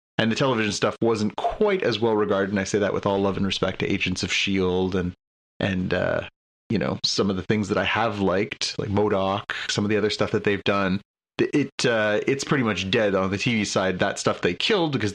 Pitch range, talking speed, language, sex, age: 100-115 Hz, 240 wpm, English, male, 30-49